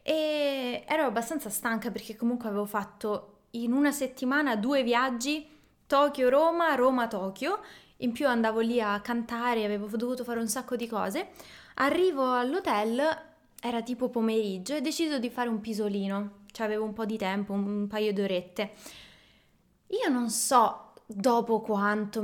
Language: Italian